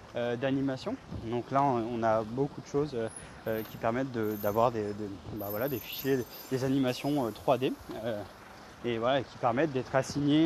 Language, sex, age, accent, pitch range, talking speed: French, male, 20-39, French, 125-150 Hz, 180 wpm